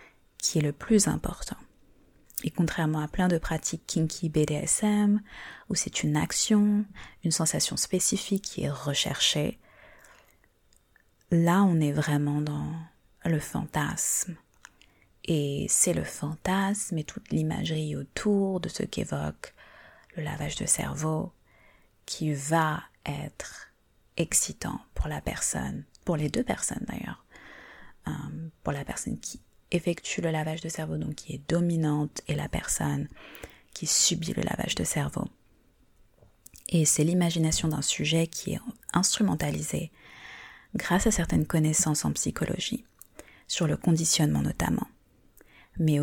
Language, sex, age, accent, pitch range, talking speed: French, female, 30-49, French, 150-180 Hz, 130 wpm